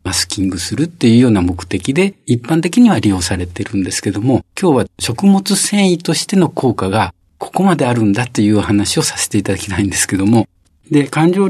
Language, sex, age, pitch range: Japanese, male, 50-69, 100-160 Hz